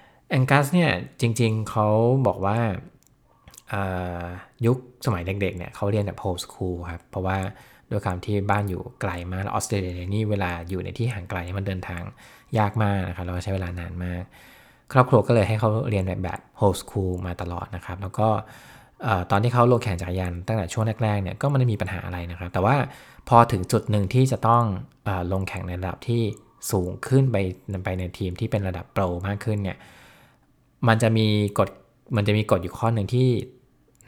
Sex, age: male, 20-39